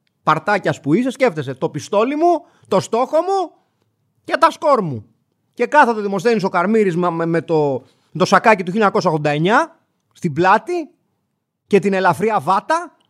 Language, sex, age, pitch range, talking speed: Greek, male, 30-49, 160-235 Hz, 150 wpm